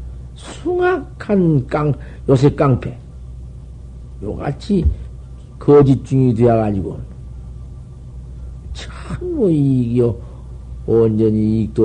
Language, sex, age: Korean, male, 50-69